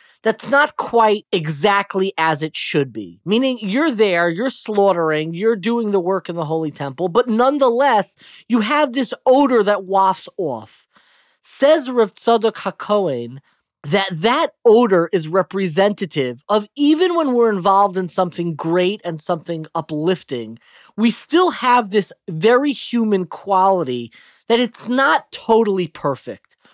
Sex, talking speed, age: male, 140 wpm, 30-49